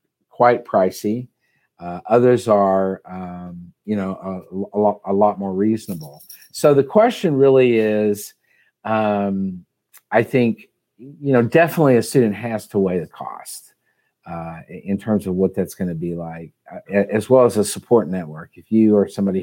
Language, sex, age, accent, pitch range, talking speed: English, male, 50-69, American, 90-110 Hz, 165 wpm